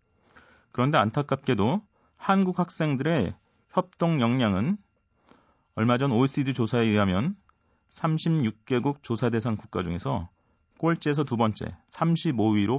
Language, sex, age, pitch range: Korean, male, 30-49, 115-170 Hz